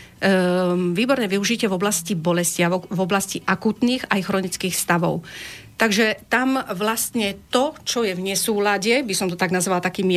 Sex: female